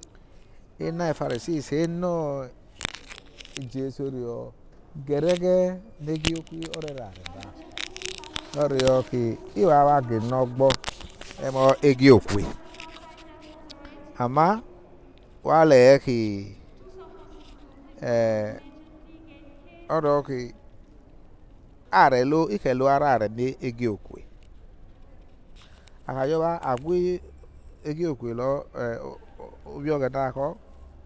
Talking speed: 70 wpm